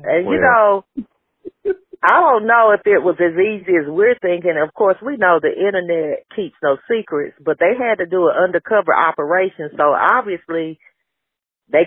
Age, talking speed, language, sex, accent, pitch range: 40-59, 170 wpm, English, female, American, 145-185 Hz